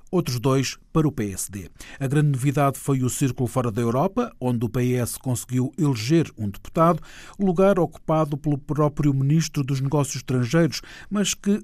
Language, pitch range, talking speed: Portuguese, 120-155 Hz, 160 wpm